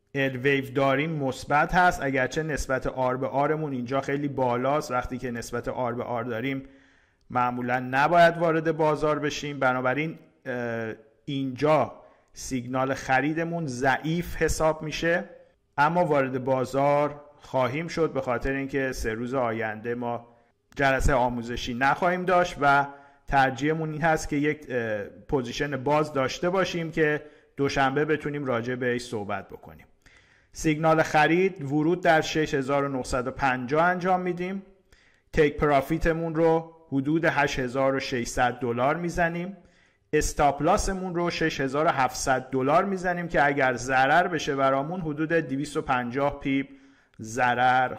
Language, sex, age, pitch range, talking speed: Persian, male, 50-69, 130-160 Hz, 115 wpm